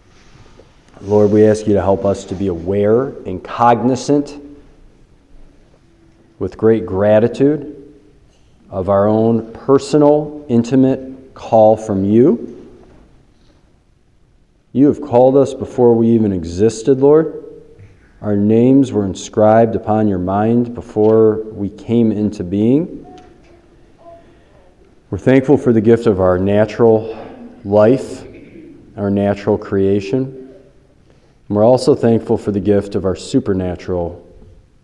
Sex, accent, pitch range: male, American, 95-115 Hz